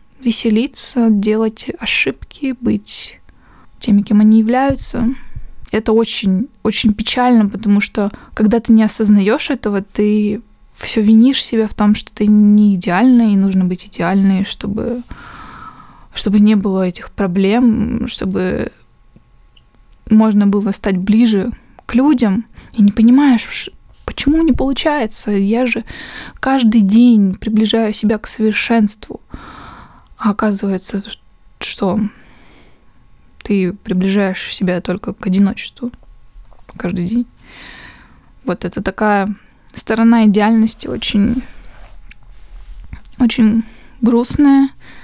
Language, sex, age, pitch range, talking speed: Russian, female, 20-39, 205-235 Hz, 105 wpm